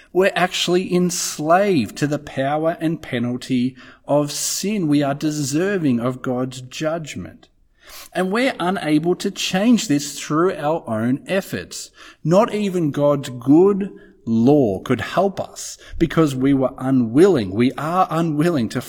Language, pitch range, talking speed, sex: English, 125-170 Hz, 135 wpm, male